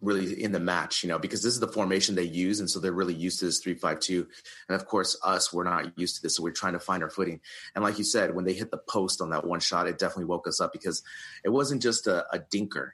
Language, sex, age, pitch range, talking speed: English, male, 30-49, 85-100 Hz, 295 wpm